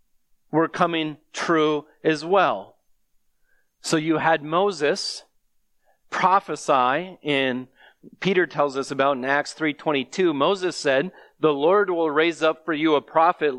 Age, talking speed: 40-59, 130 wpm